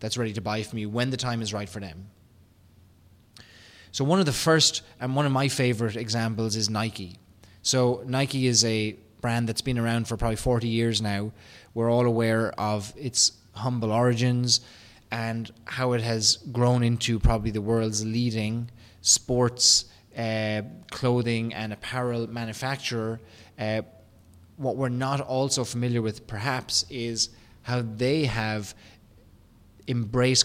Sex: male